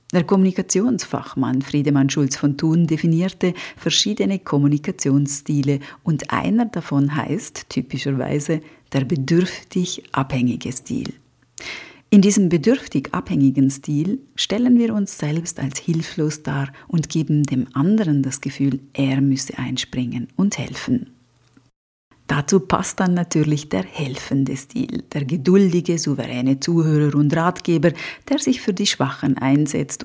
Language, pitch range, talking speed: German, 135-180 Hz, 120 wpm